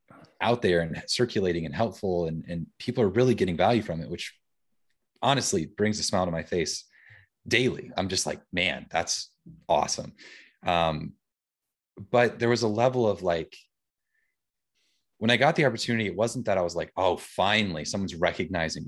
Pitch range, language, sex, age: 90-110 Hz, English, male, 30-49